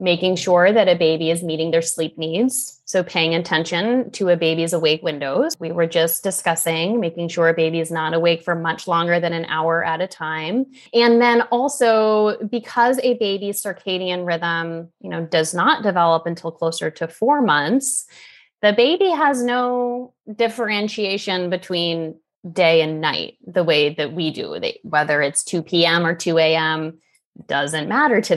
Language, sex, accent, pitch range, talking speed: English, female, American, 165-200 Hz, 170 wpm